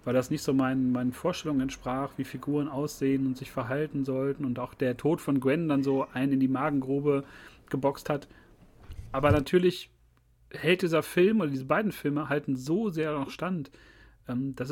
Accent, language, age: German, German, 40-59